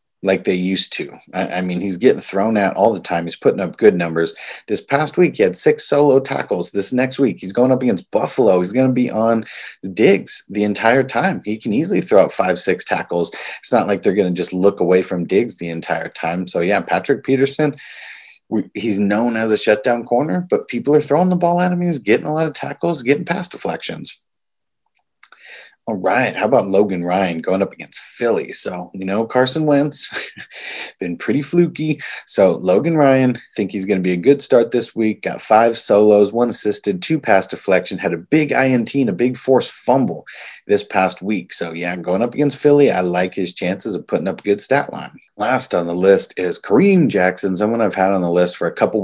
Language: English